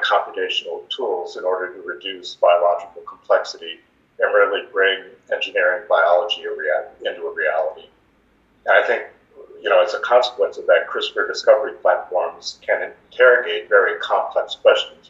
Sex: male